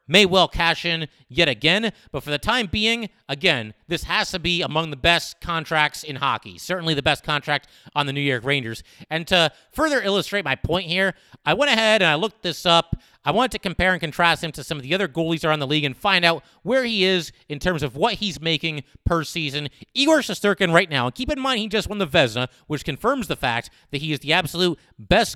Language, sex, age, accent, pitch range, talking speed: English, male, 30-49, American, 145-185 Hz, 235 wpm